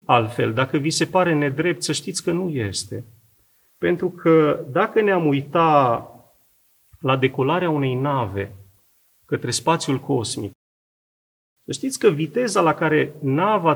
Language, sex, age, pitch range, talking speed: Romanian, male, 40-59, 125-180 Hz, 130 wpm